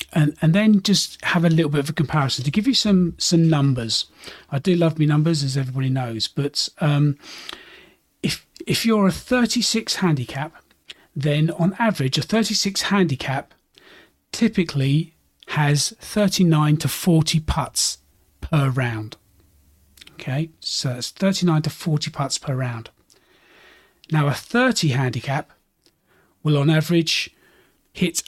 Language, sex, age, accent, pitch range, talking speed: English, male, 40-59, British, 140-175 Hz, 135 wpm